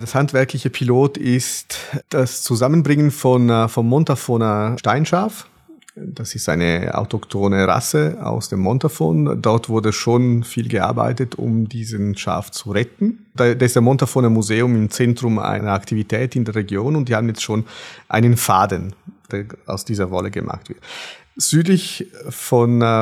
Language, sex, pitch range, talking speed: German, male, 110-135 Hz, 145 wpm